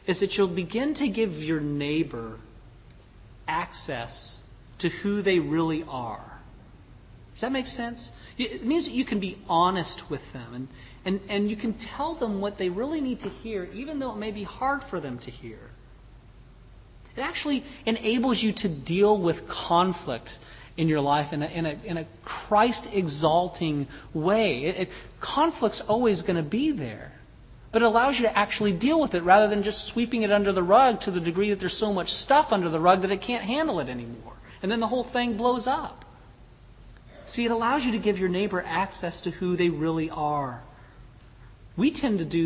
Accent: American